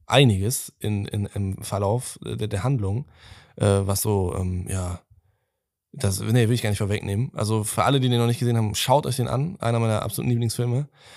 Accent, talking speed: German, 200 wpm